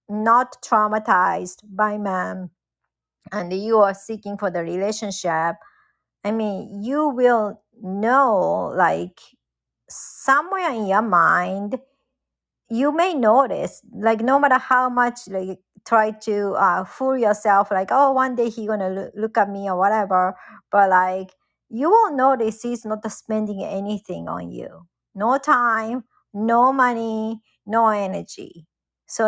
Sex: male